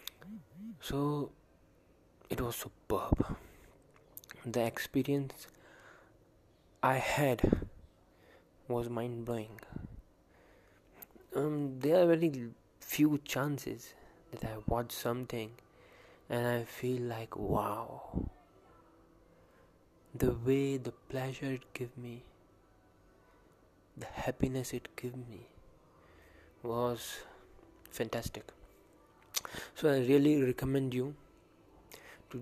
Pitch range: 115-130 Hz